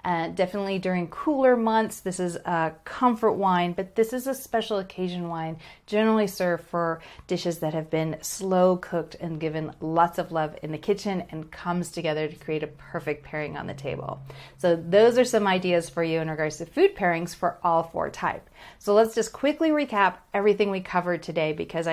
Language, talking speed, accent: English, 195 wpm, American